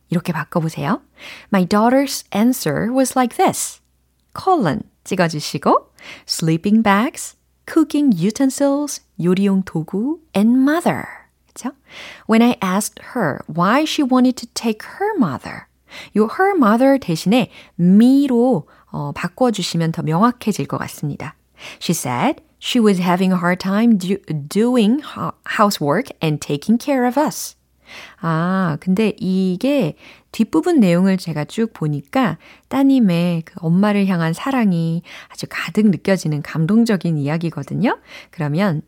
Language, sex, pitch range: Korean, female, 165-240 Hz